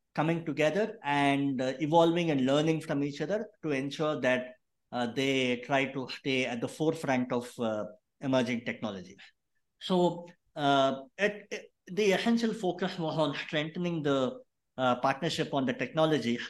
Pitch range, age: 135-170 Hz, 60-79